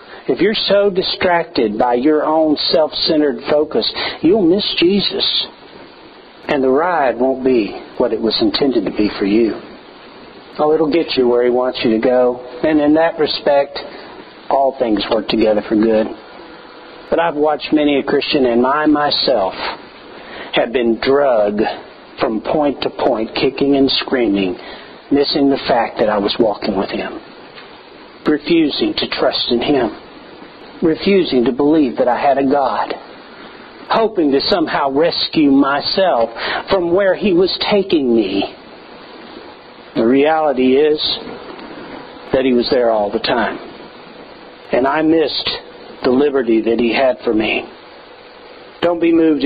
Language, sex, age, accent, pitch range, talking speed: English, male, 50-69, American, 130-170 Hz, 145 wpm